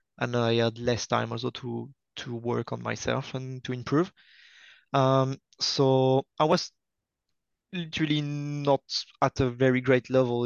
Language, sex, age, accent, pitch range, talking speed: English, male, 20-39, French, 120-135 Hz, 145 wpm